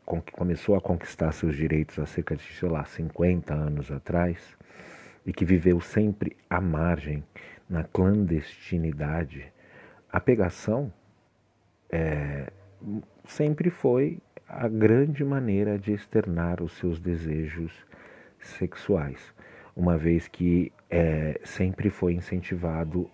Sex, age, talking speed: male, 50-69, 110 wpm